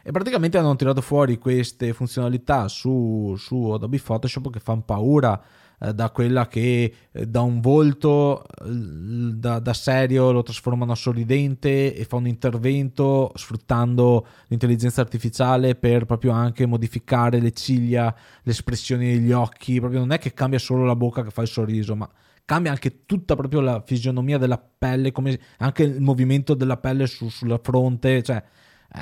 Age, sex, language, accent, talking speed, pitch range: 20-39, male, Italian, native, 155 wpm, 120-135 Hz